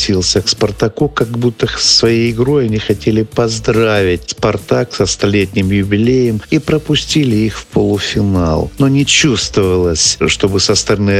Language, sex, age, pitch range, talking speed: Russian, male, 50-69, 95-115 Hz, 130 wpm